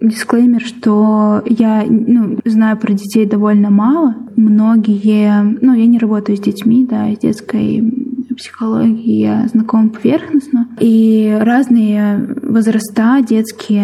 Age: 10-29